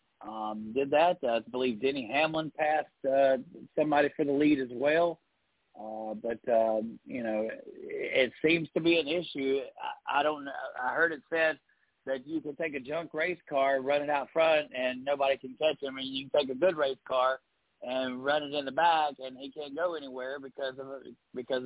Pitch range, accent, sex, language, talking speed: 130-160 Hz, American, male, English, 200 wpm